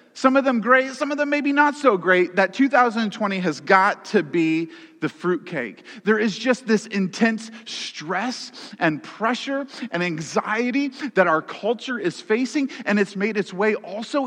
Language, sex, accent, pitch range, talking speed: English, male, American, 195-245 Hz, 170 wpm